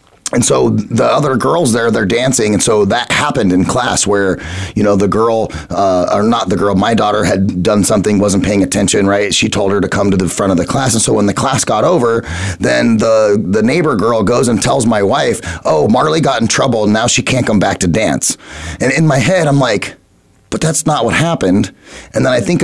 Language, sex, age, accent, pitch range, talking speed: English, male, 30-49, American, 95-120 Hz, 235 wpm